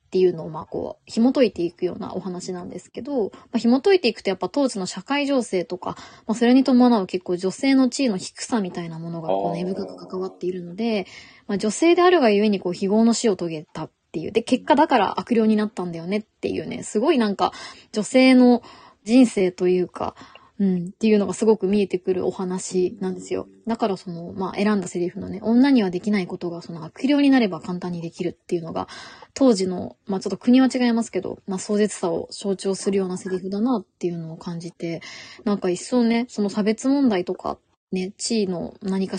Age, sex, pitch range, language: 20-39, female, 180-230 Hz, Japanese